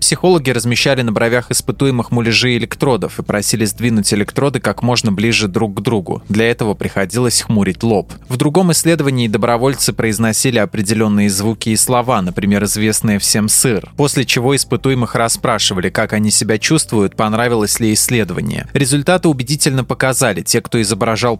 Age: 20-39